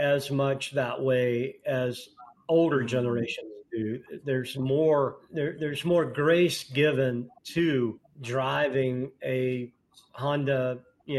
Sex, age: male, 50-69